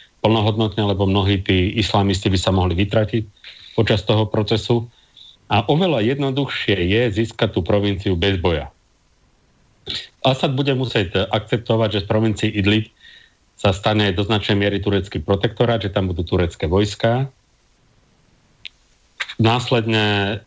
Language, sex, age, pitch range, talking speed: Slovak, male, 40-59, 95-115 Hz, 120 wpm